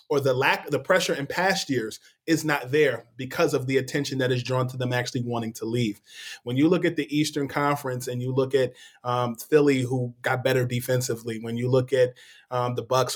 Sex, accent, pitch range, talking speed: male, American, 130-145 Hz, 225 wpm